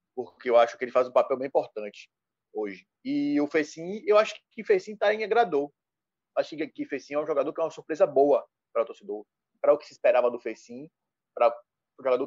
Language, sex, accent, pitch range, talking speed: Portuguese, male, Brazilian, 125-180 Hz, 230 wpm